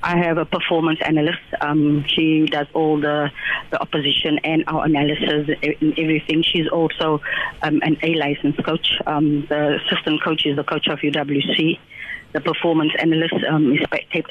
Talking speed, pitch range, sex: 160 wpm, 150-165 Hz, female